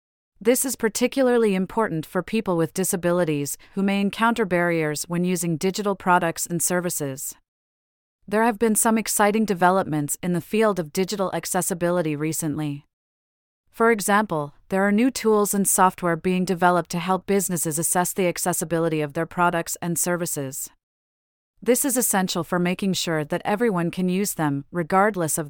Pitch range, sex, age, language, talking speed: 165-200 Hz, female, 30-49, English, 155 wpm